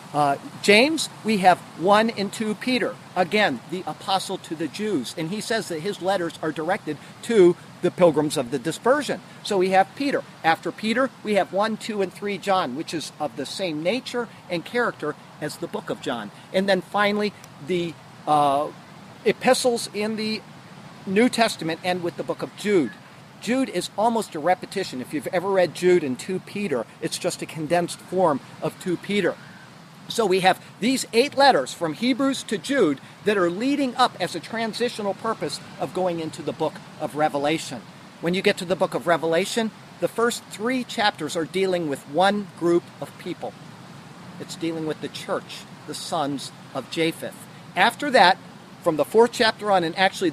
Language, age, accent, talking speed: English, 50-69, American, 180 wpm